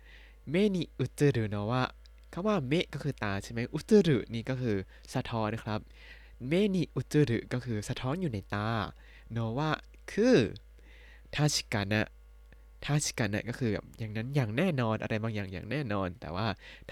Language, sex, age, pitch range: Thai, male, 20-39, 105-150 Hz